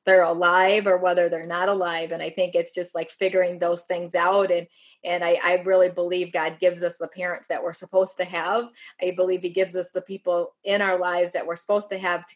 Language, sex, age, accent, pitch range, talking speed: English, female, 20-39, American, 175-195 Hz, 240 wpm